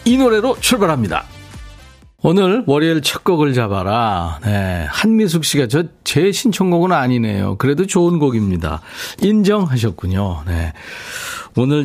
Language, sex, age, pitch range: Korean, male, 40-59, 105-155 Hz